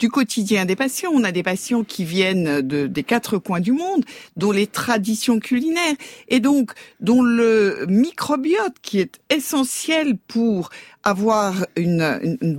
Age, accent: 50-69, French